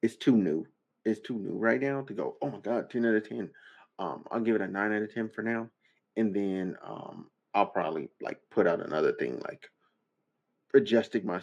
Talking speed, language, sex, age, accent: 215 wpm, English, male, 30-49, American